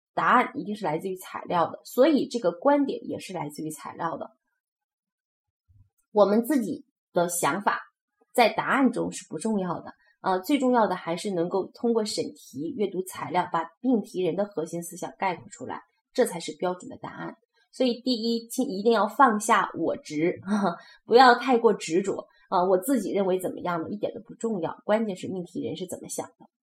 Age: 20-39